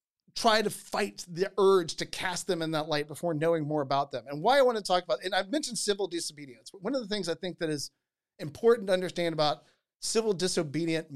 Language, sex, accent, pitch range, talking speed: English, male, American, 155-215 Hz, 225 wpm